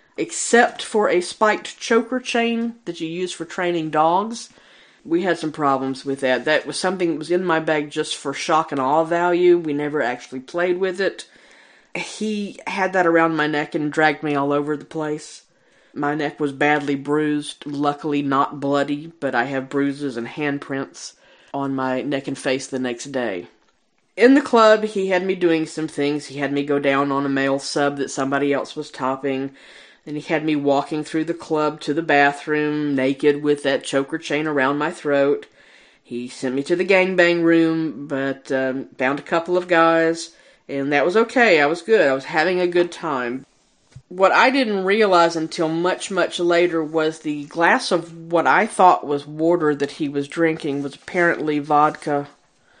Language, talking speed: English, 190 wpm